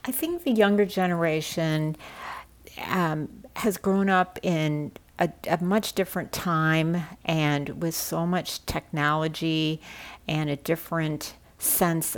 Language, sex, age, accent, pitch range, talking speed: English, female, 50-69, American, 145-180 Hz, 120 wpm